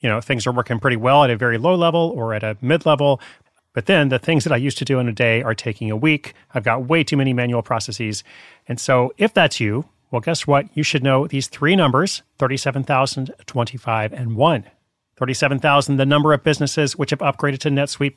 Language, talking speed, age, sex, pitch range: English, 230 wpm, 40-59, male, 120-155 Hz